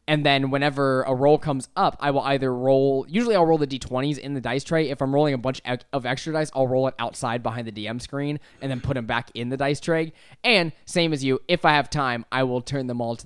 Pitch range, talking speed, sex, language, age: 115-140 Hz, 265 wpm, male, English, 10-29